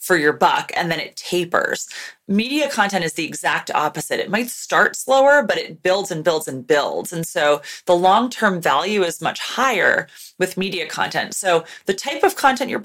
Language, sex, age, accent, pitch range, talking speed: English, female, 30-49, American, 165-215 Hz, 190 wpm